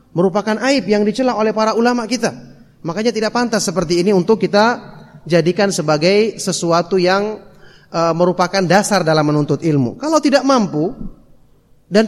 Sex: male